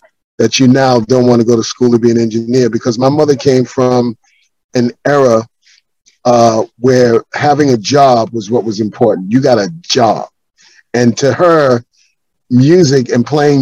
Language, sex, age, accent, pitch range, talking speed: English, male, 40-59, American, 120-145 Hz, 170 wpm